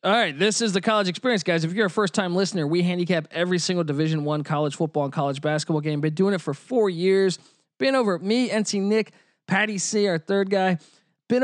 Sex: male